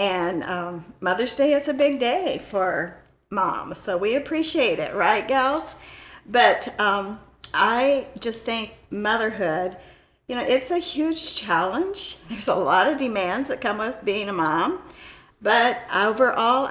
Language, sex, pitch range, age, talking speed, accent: English, female, 190-265 Hz, 50-69, 145 wpm, American